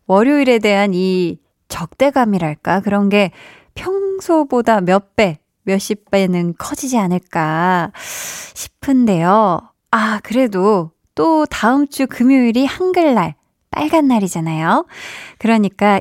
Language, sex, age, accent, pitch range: Korean, female, 20-39, native, 185-260 Hz